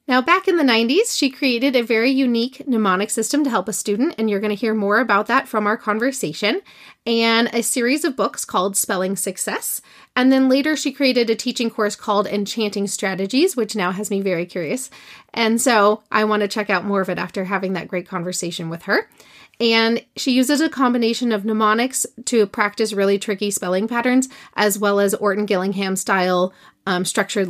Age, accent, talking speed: 30-49, American, 195 wpm